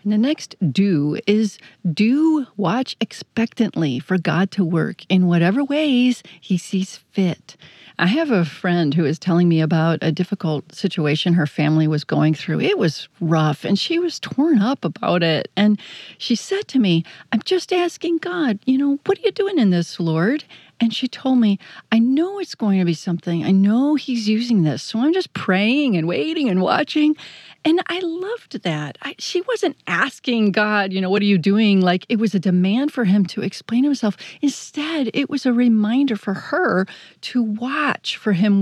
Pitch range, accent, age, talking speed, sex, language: 175-255 Hz, American, 40-59, 190 wpm, female, English